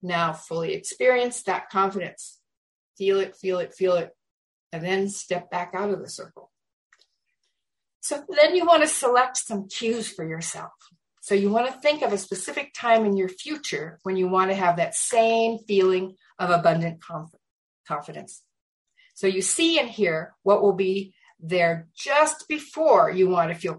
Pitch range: 185-245 Hz